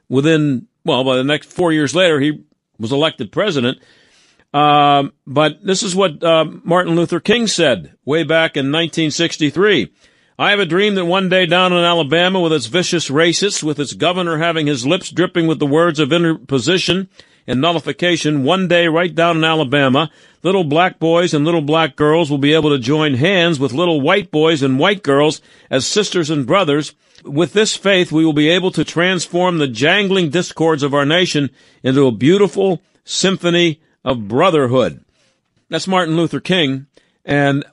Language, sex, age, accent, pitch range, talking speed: English, male, 50-69, American, 140-175 Hz, 175 wpm